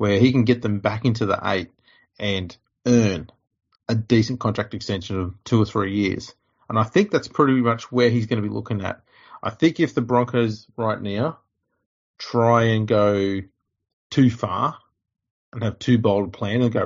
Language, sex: English, male